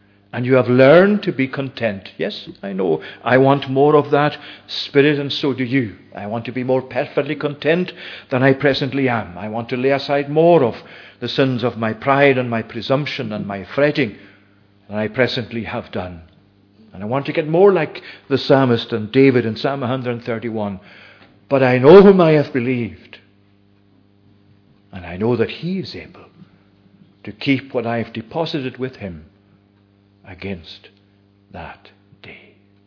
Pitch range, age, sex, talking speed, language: 100-130 Hz, 50-69, male, 170 wpm, English